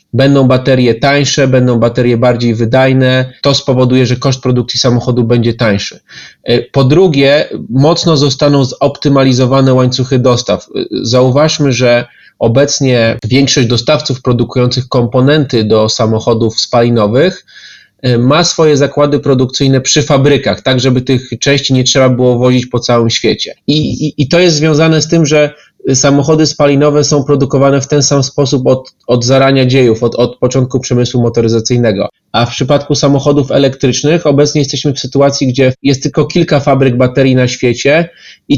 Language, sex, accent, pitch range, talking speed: Polish, male, native, 125-145 Hz, 145 wpm